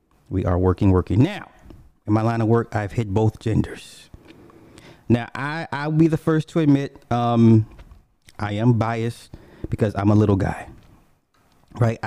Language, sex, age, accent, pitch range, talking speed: English, male, 30-49, American, 105-140 Hz, 160 wpm